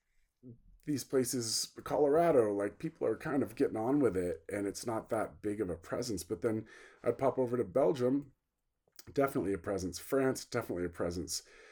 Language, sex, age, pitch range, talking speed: English, male, 40-59, 95-130 Hz, 175 wpm